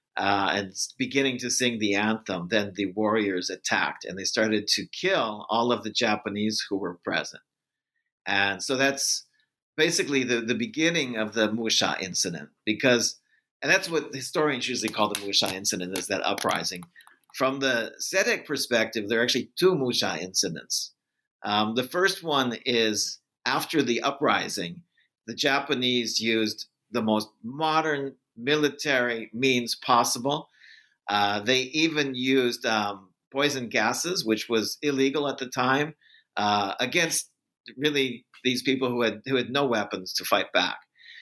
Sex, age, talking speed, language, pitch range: male, 50-69, 145 wpm, English, 105-135 Hz